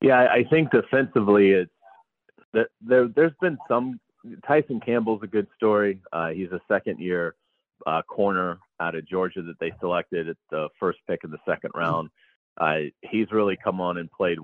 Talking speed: 175 wpm